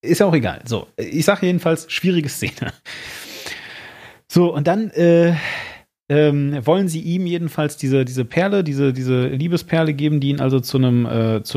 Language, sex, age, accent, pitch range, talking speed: German, male, 30-49, German, 120-165 Hz, 150 wpm